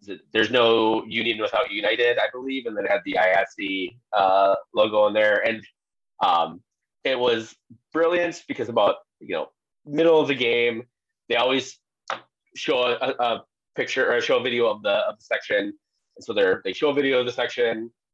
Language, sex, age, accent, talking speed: English, male, 30-49, American, 180 wpm